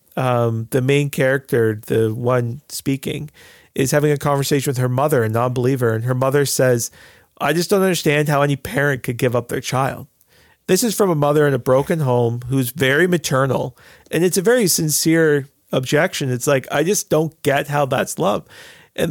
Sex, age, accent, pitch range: male, 40-59, American, 130-160 Hz